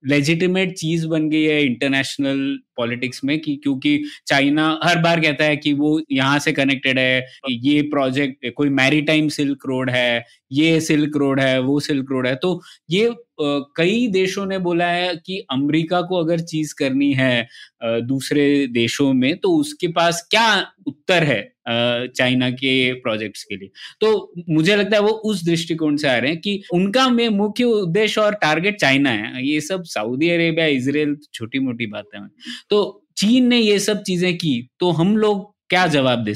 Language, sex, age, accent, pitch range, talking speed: Hindi, male, 20-39, native, 130-180 Hz, 175 wpm